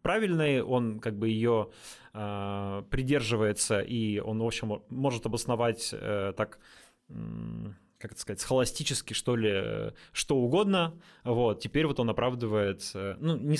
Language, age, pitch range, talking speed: Russian, 20-39, 115-150 Hz, 145 wpm